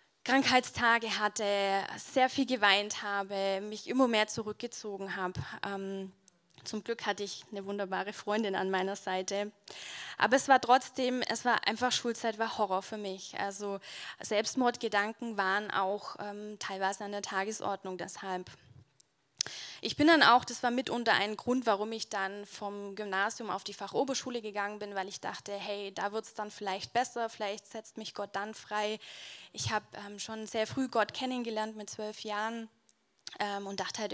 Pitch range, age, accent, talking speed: 200-230 Hz, 10-29, German, 160 wpm